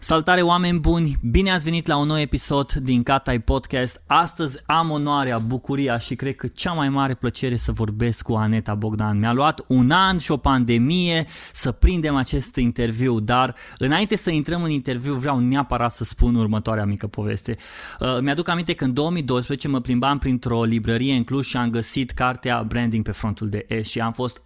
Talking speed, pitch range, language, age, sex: 185 wpm, 120-150 Hz, Romanian, 20-39, male